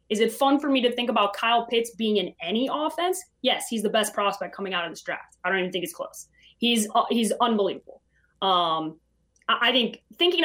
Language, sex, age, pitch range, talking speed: English, female, 20-39, 200-295 Hz, 225 wpm